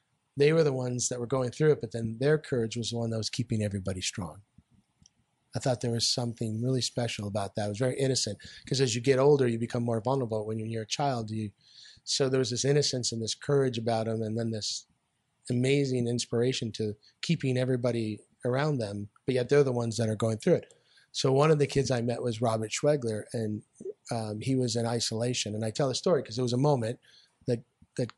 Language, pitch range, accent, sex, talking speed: English, 110-130 Hz, American, male, 225 wpm